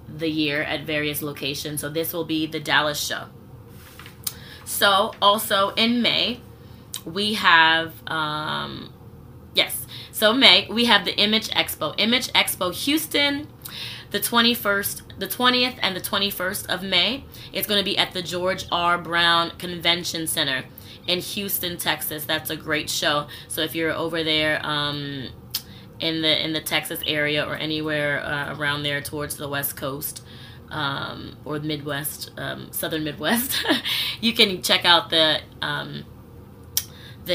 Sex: female